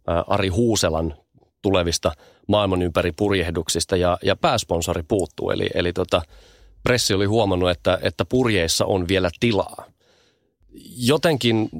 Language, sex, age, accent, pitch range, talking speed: Finnish, male, 30-49, native, 85-105 Hz, 115 wpm